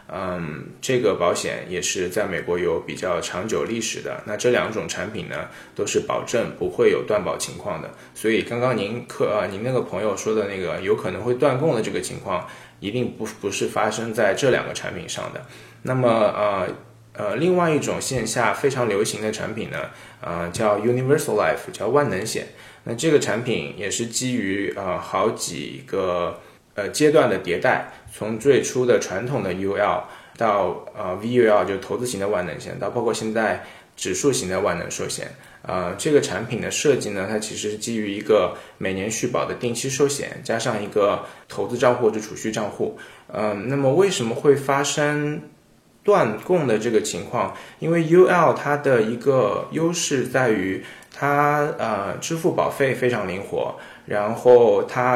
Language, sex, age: Chinese, male, 20-39